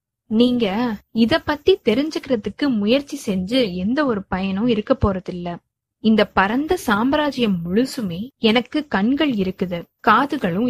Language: Tamil